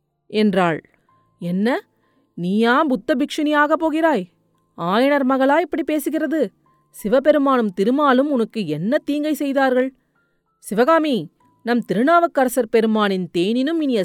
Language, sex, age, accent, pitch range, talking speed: Tamil, female, 40-59, native, 200-280 Hz, 90 wpm